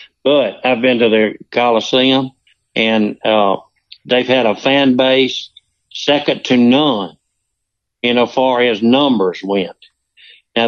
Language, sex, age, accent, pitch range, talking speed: English, male, 60-79, American, 115-145 Hz, 130 wpm